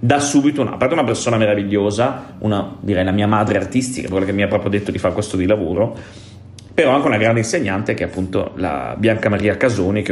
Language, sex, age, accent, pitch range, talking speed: Italian, male, 30-49, native, 100-125 Hz, 220 wpm